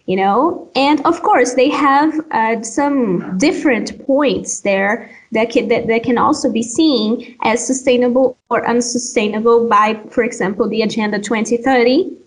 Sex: female